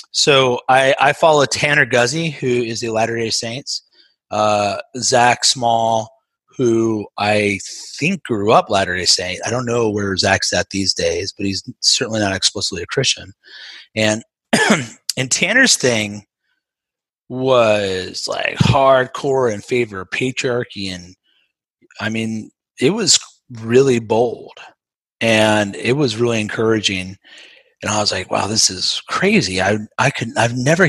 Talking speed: 140 wpm